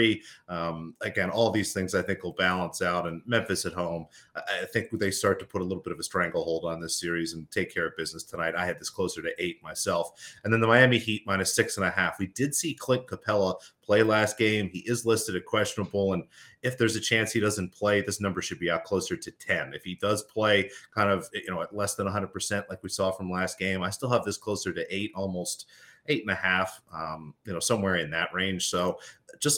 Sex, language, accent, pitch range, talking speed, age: male, English, American, 90-110 Hz, 245 wpm, 30-49